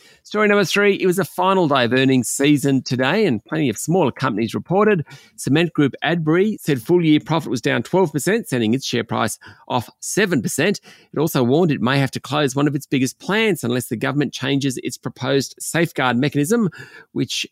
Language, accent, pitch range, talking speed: English, Australian, 125-180 Hz, 190 wpm